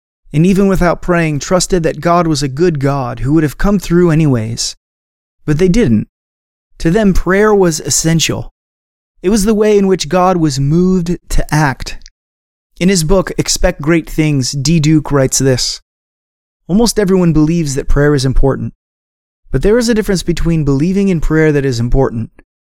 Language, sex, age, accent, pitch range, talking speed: English, male, 30-49, American, 120-165 Hz, 170 wpm